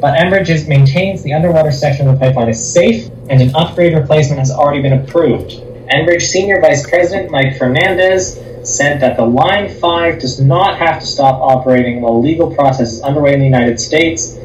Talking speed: 185 wpm